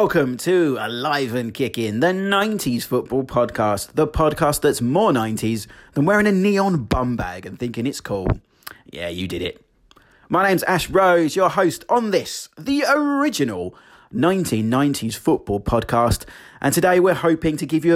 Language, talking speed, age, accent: English, 150 wpm, 30-49, British